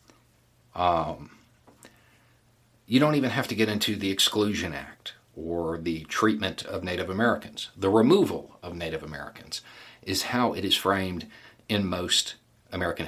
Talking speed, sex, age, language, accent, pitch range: 140 wpm, male, 50-69, English, American, 95-120 Hz